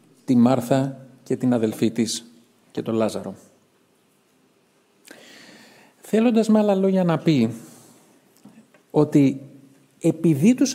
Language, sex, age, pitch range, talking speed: Greek, male, 50-69, 130-180 Hz, 100 wpm